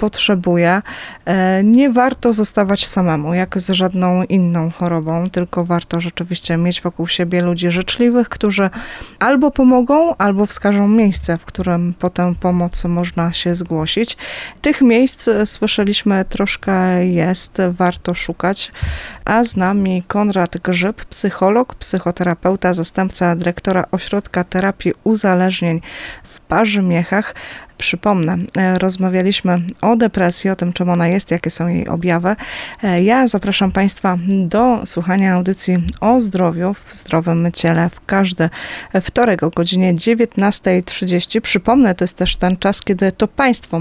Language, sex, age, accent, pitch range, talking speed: Polish, female, 20-39, native, 175-205 Hz, 125 wpm